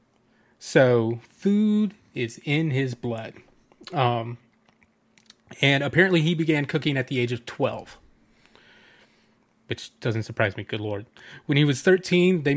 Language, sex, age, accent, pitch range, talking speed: English, male, 30-49, American, 120-155 Hz, 135 wpm